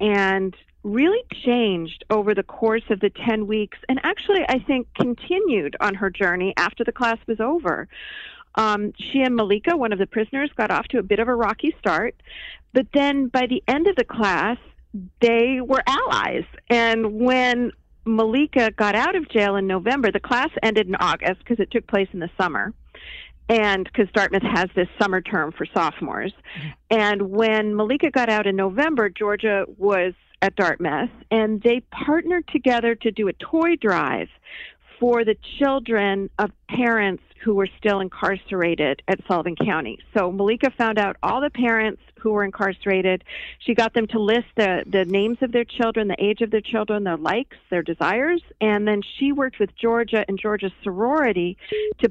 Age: 50-69